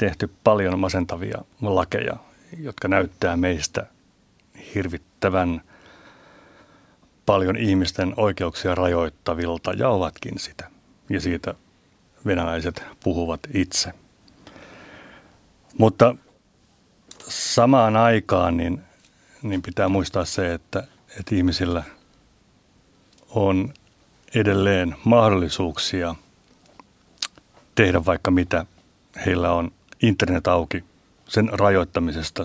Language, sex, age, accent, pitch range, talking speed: Finnish, male, 60-79, native, 90-100 Hz, 75 wpm